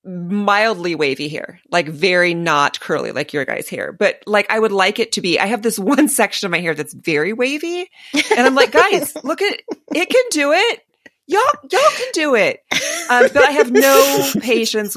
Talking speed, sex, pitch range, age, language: 210 wpm, female, 175-255 Hz, 30-49, English